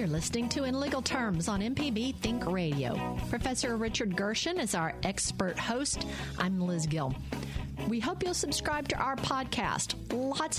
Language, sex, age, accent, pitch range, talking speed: English, female, 50-69, American, 185-260 Hz, 160 wpm